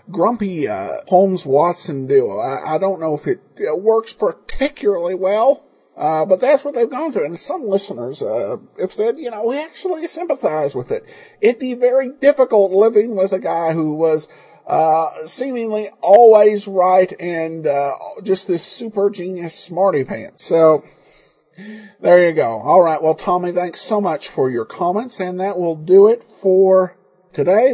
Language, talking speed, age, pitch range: English, 170 wpm, 50-69, 160-215 Hz